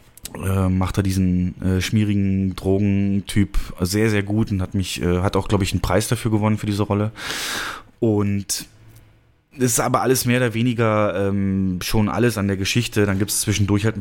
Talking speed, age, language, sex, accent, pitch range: 190 wpm, 20-39, German, male, German, 95-115 Hz